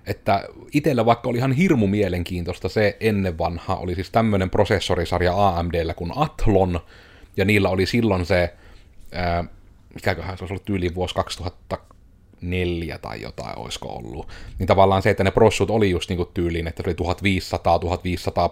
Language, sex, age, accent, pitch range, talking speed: Finnish, male, 30-49, native, 90-105 Hz, 155 wpm